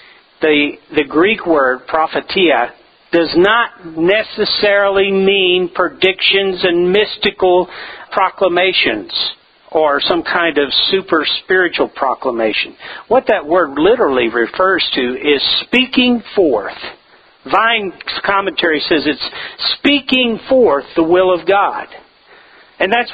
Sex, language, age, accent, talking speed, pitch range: male, English, 50-69, American, 105 wpm, 190-250 Hz